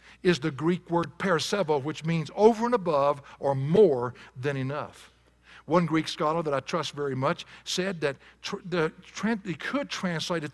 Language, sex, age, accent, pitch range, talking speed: English, male, 60-79, American, 145-200 Hz, 160 wpm